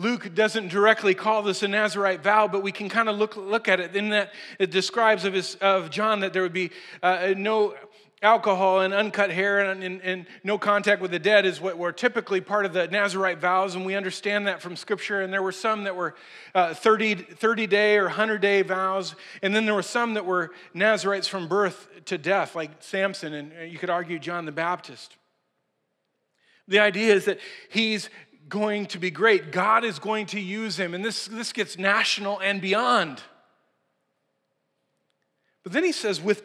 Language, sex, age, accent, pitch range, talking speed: English, male, 40-59, American, 190-220 Hz, 190 wpm